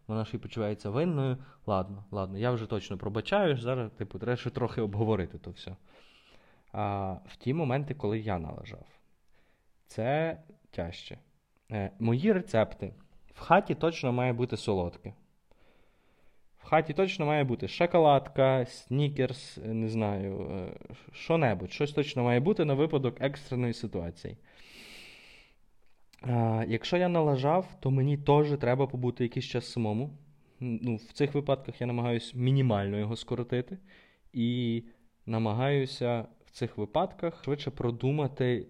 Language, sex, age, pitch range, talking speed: Ukrainian, male, 20-39, 110-135 Hz, 130 wpm